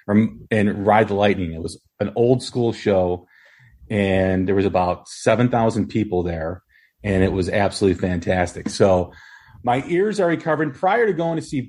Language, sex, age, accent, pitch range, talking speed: English, male, 40-59, American, 105-145 Hz, 165 wpm